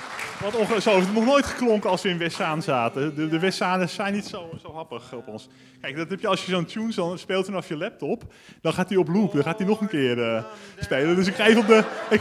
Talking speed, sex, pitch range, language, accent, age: 275 wpm, male, 155-210 Hz, Dutch, Dutch, 20-39